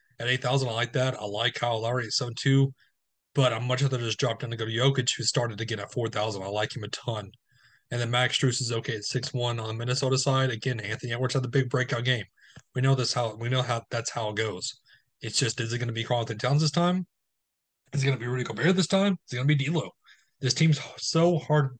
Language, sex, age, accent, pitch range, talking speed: English, male, 30-49, American, 120-145 Hz, 265 wpm